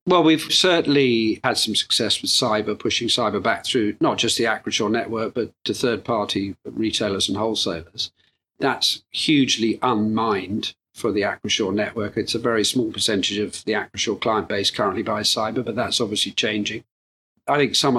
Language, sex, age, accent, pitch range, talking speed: English, male, 40-59, British, 110-130 Hz, 170 wpm